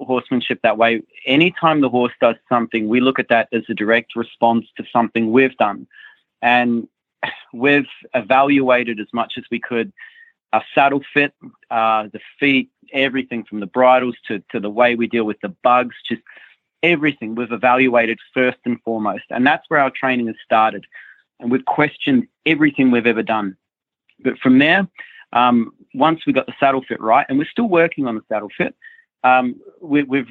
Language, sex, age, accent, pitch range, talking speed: English, male, 30-49, Australian, 115-140 Hz, 175 wpm